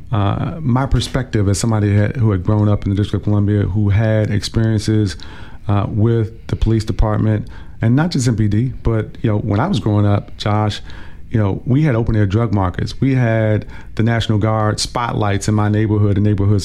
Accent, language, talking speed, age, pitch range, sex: American, English, 195 wpm, 40-59, 100-115 Hz, male